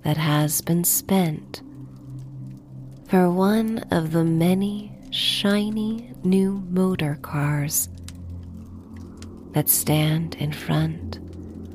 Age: 30-49